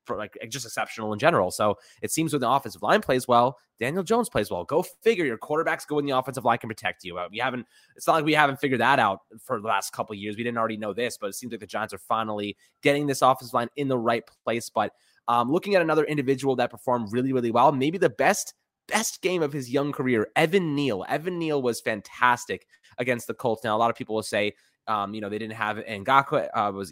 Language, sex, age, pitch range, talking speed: English, male, 20-39, 105-140 Hz, 250 wpm